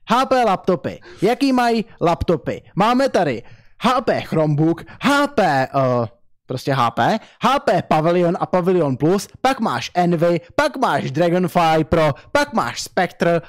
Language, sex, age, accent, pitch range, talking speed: Czech, male, 20-39, native, 150-230 Hz, 125 wpm